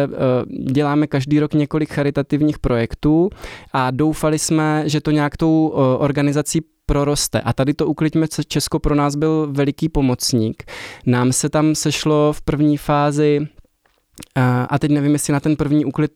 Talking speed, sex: 150 wpm, male